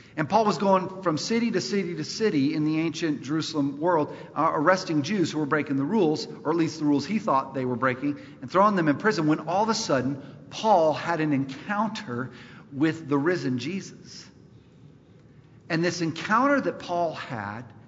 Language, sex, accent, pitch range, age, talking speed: English, male, American, 130-175 Hz, 50-69, 190 wpm